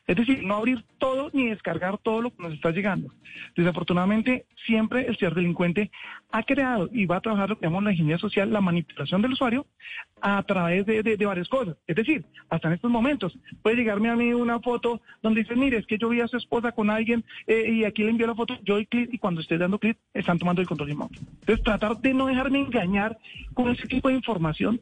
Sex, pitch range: male, 185-240 Hz